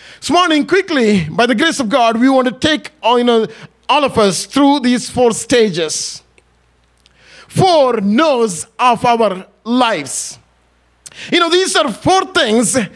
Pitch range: 215-300 Hz